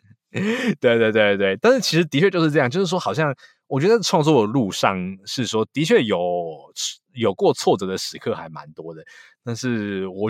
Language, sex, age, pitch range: Chinese, male, 20-39, 90-145 Hz